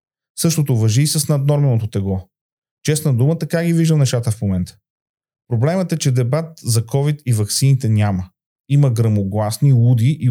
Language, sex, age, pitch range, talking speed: Bulgarian, male, 30-49, 120-150 Hz, 155 wpm